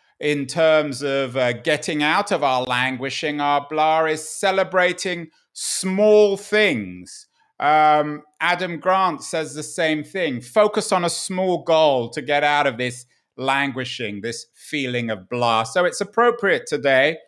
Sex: male